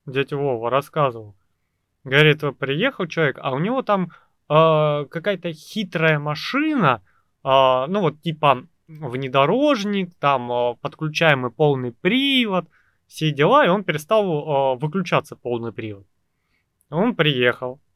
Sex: male